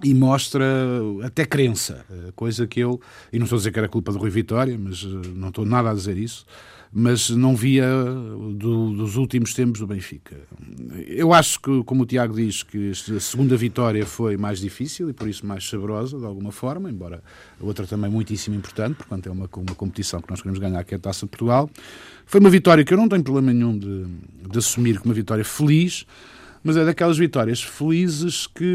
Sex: male